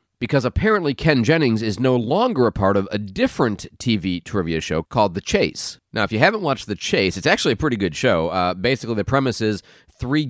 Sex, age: male, 30-49